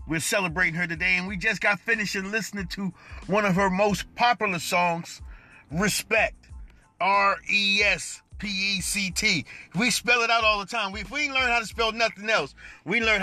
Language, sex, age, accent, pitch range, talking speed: English, male, 30-49, American, 160-195 Hz, 170 wpm